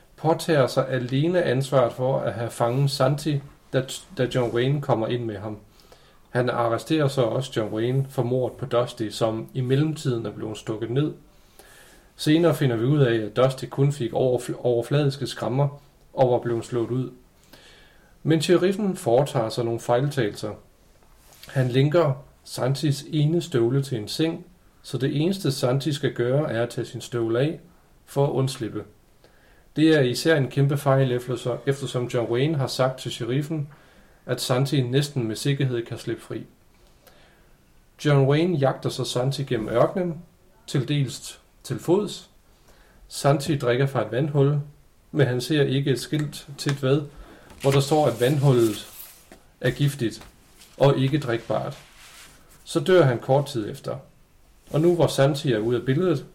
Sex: male